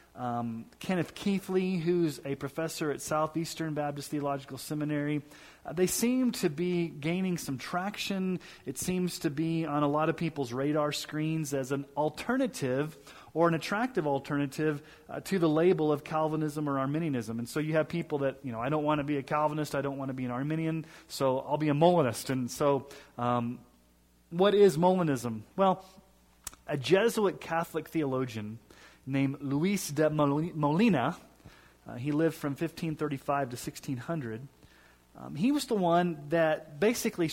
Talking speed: 160 wpm